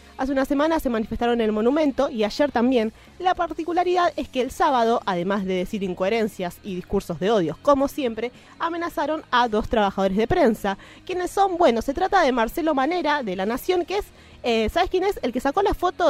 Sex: female